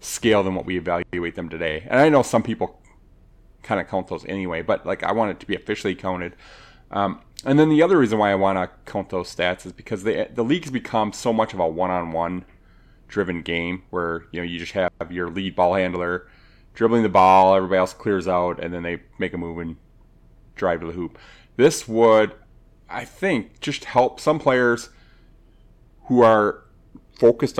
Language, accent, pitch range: English, American, 90-110 Hz